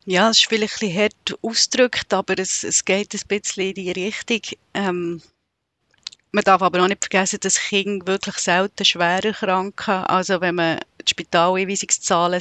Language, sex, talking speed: German, female, 170 wpm